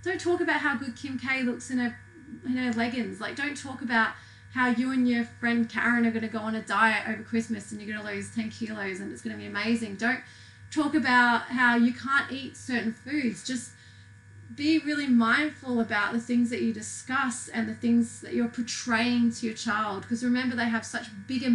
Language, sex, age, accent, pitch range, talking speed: English, female, 30-49, Australian, 225-275 Hz, 220 wpm